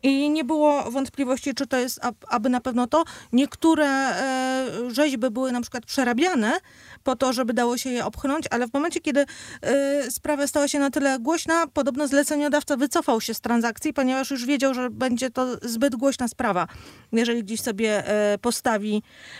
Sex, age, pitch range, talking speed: female, 30-49, 230-280 Hz, 165 wpm